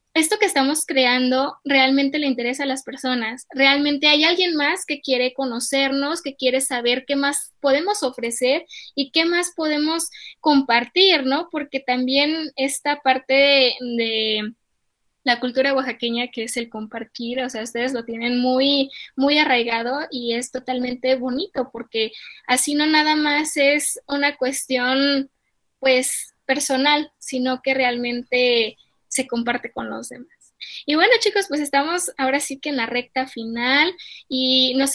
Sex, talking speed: female, 150 wpm